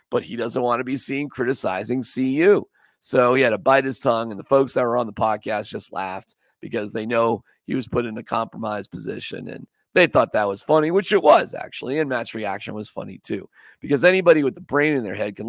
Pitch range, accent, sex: 115-160 Hz, American, male